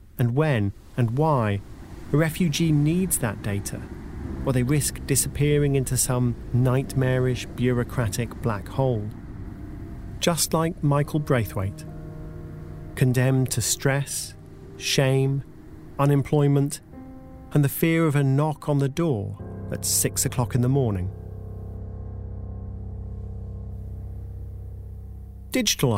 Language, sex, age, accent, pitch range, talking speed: English, male, 40-59, British, 100-140 Hz, 100 wpm